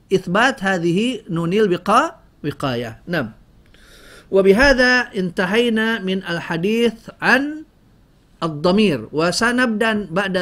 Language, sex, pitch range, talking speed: Indonesian, male, 155-220 Hz, 75 wpm